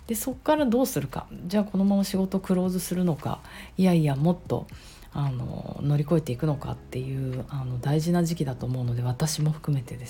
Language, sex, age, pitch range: Japanese, female, 40-59, 135-190 Hz